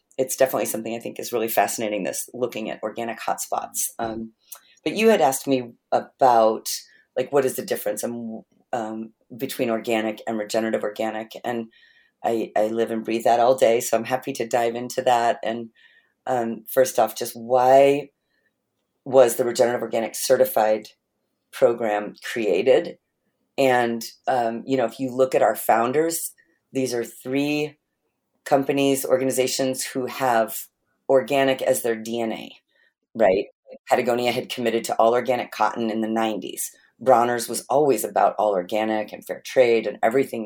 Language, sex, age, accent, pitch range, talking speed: English, female, 40-59, American, 115-145 Hz, 150 wpm